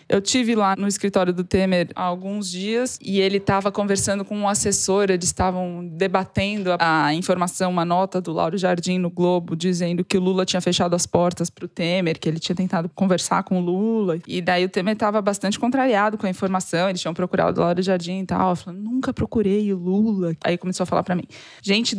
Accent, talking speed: Brazilian, 215 wpm